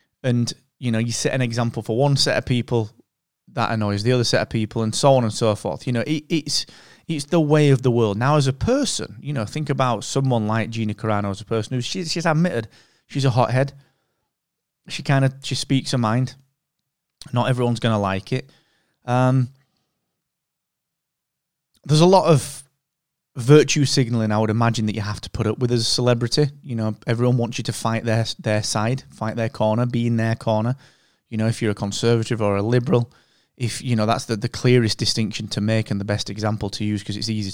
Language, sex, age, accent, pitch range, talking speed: English, male, 20-39, British, 110-135 Hz, 215 wpm